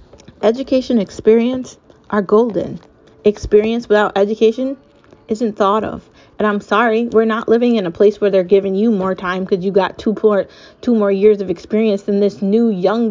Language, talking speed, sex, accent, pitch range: English, 170 wpm, female, American, 185-230 Hz